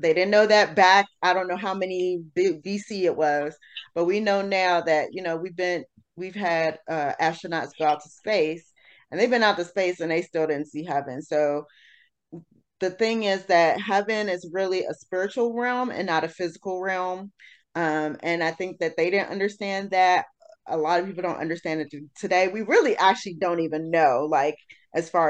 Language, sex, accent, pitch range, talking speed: English, female, American, 160-195 Hz, 200 wpm